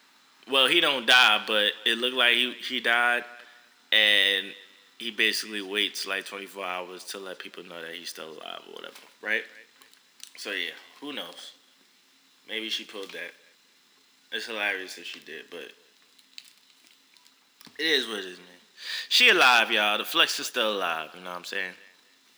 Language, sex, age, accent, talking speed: English, male, 20-39, American, 165 wpm